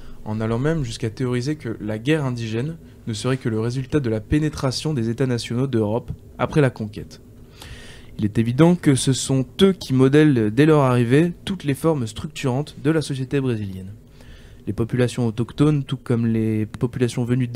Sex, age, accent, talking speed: male, 20-39, French, 180 wpm